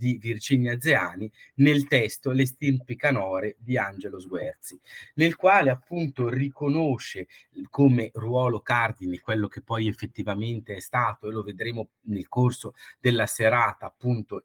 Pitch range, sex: 110-135 Hz, male